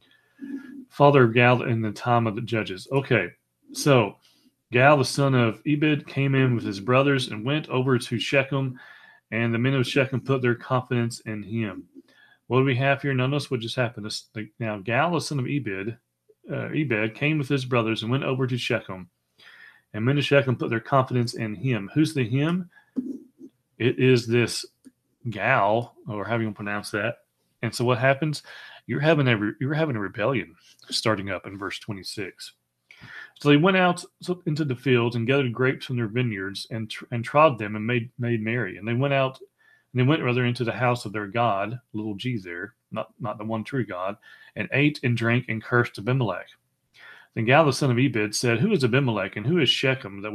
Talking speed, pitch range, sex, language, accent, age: 205 wpm, 110-140 Hz, male, English, American, 40-59